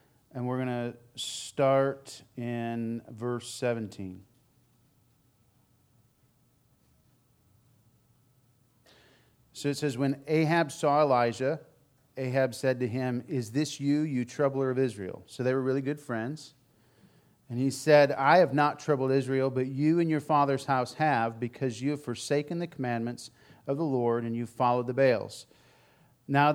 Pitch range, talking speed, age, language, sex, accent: 125-150 Hz, 140 wpm, 40-59, English, male, American